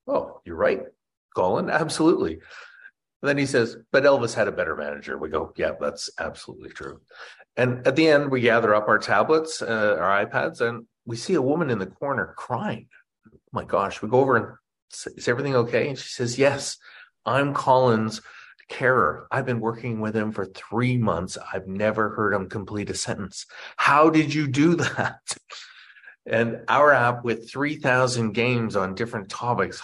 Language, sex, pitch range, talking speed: English, male, 105-130 Hz, 180 wpm